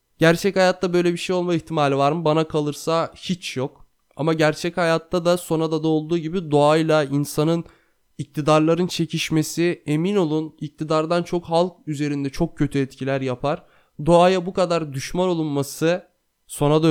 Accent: native